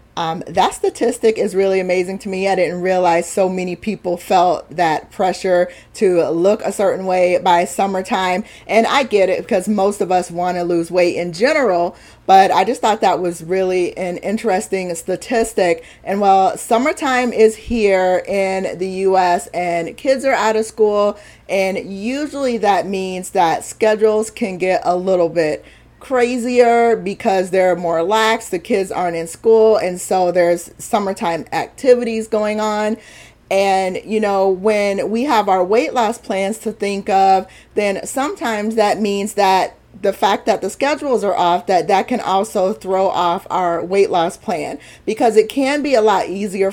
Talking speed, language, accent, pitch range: 170 wpm, English, American, 180-220 Hz